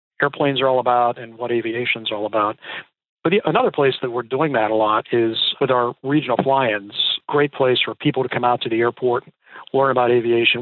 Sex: male